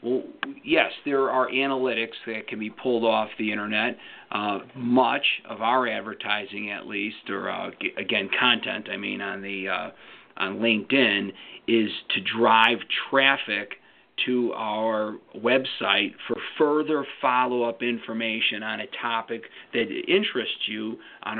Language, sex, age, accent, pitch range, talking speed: English, male, 40-59, American, 110-130 Hz, 130 wpm